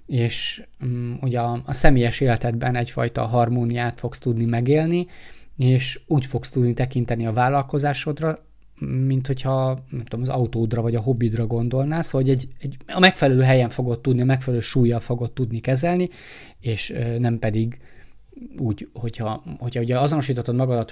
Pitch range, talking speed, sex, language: 120-145 Hz, 140 wpm, male, Hungarian